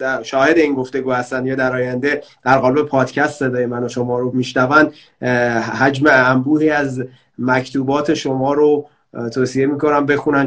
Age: 30-49